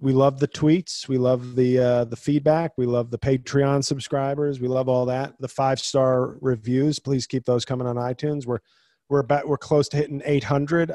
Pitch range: 125-155 Hz